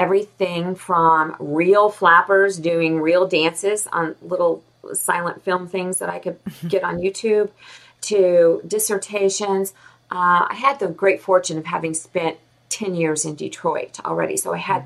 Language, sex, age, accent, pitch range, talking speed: English, female, 40-59, American, 160-190 Hz, 150 wpm